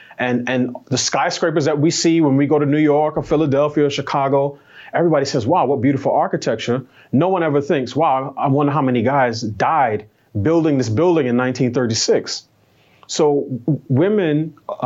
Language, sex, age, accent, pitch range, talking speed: English, male, 30-49, American, 125-160 Hz, 160 wpm